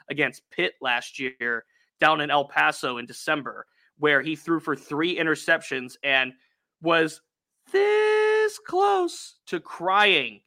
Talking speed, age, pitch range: 125 wpm, 30-49, 145-175 Hz